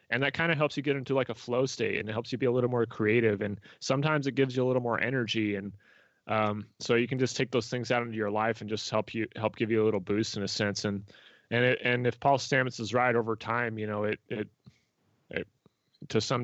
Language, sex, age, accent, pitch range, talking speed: English, male, 20-39, American, 110-135 Hz, 270 wpm